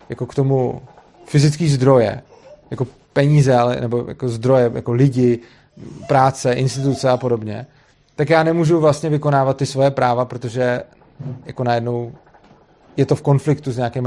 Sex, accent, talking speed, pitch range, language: male, native, 145 wpm, 120-140 Hz, Czech